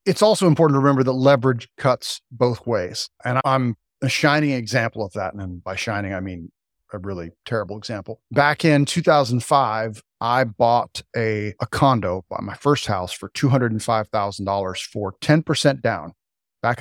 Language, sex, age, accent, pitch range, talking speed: English, male, 40-59, American, 105-135 Hz, 155 wpm